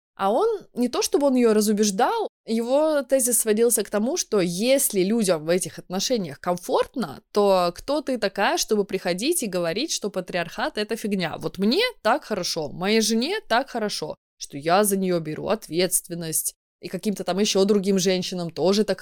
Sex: female